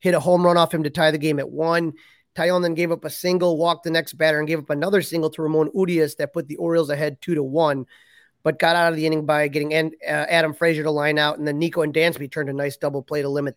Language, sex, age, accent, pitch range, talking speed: English, male, 30-49, American, 155-180 Hz, 275 wpm